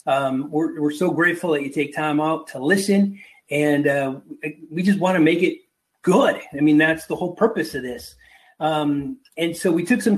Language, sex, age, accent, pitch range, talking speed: English, male, 30-49, American, 145-185 Hz, 205 wpm